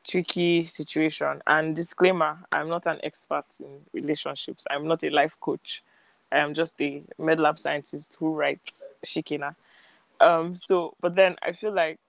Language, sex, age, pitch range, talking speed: English, male, 20-39, 145-170 Hz, 160 wpm